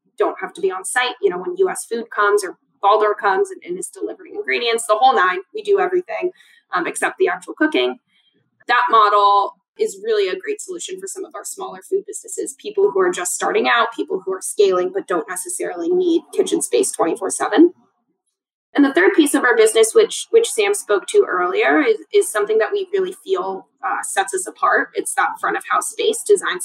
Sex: female